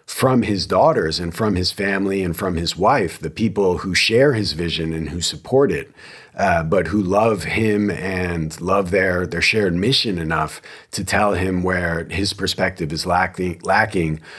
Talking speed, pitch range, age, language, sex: 175 wpm, 90-105 Hz, 40-59, English, male